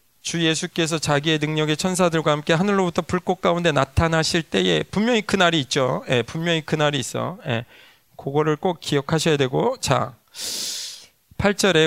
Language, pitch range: Korean, 145-185 Hz